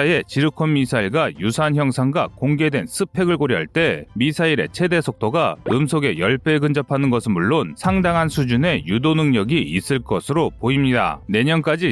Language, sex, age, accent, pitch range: Korean, male, 30-49, native, 130-165 Hz